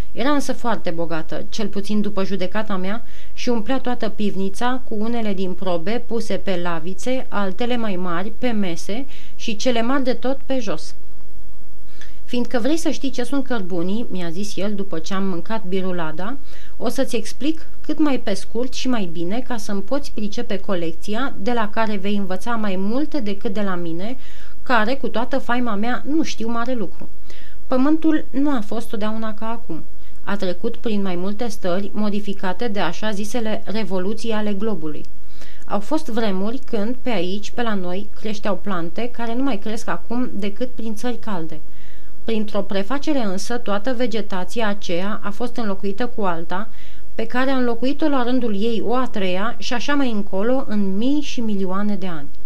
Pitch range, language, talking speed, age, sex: 195-245 Hz, Romanian, 175 wpm, 30-49, female